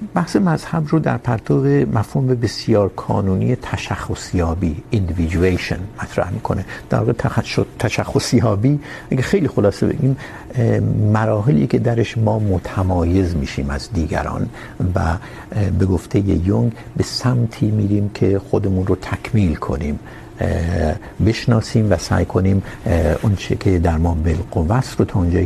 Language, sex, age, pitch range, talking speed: Urdu, male, 60-79, 95-125 Hz, 125 wpm